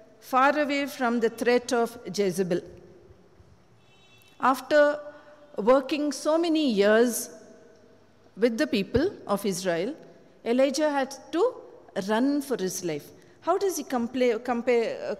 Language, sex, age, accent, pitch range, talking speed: English, female, 50-69, Indian, 225-285 Hz, 115 wpm